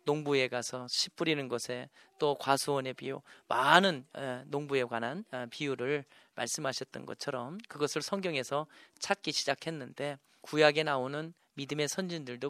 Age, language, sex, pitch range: 40-59, Korean, male, 130-160 Hz